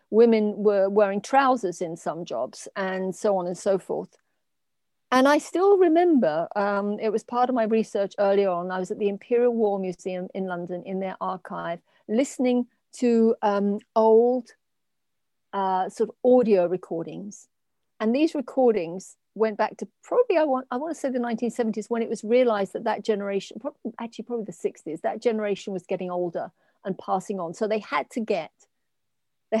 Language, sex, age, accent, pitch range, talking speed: English, female, 40-59, British, 195-245 Hz, 175 wpm